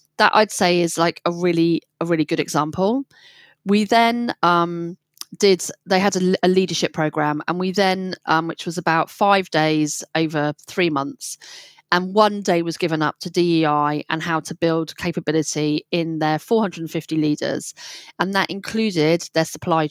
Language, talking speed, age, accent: English, 165 wpm, 30-49, British